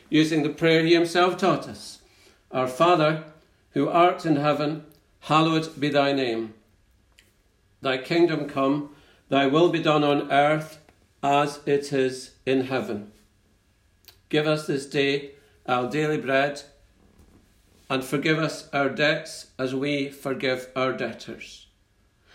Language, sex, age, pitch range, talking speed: English, male, 50-69, 105-155 Hz, 130 wpm